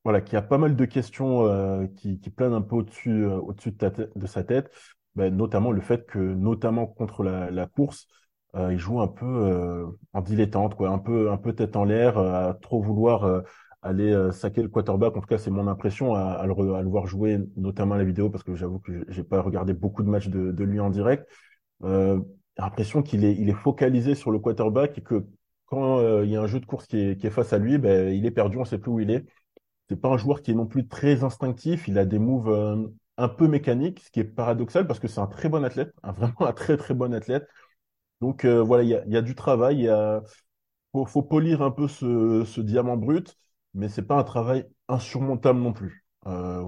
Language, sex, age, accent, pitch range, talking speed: French, male, 20-39, French, 100-125 Hz, 250 wpm